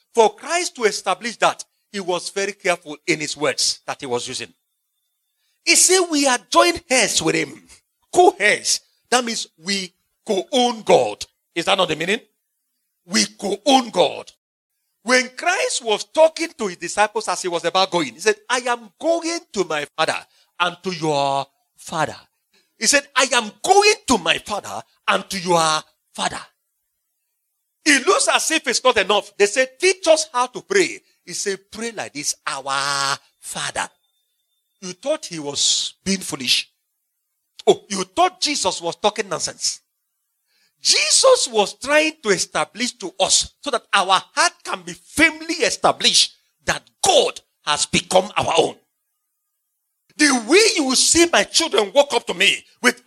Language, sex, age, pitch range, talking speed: English, male, 40-59, 185-310 Hz, 160 wpm